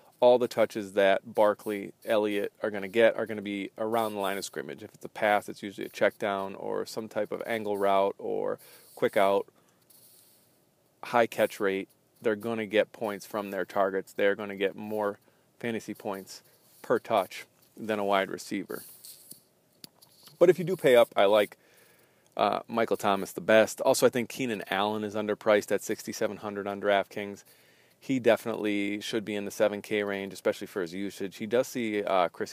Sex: male